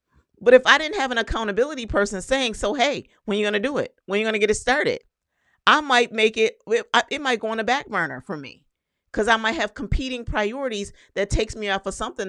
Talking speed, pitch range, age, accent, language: 230 wpm, 180-245 Hz, 40-59, American, English